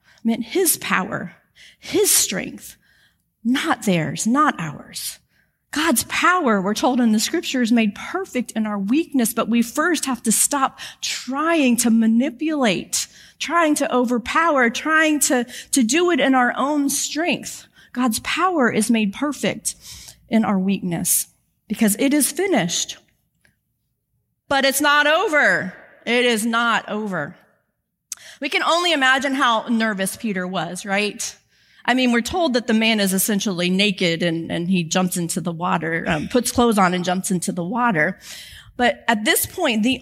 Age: 40-59